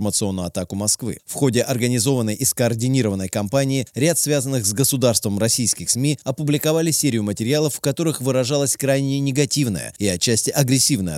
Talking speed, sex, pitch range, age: 135 wpm, male, 105-140 Hz, 20-39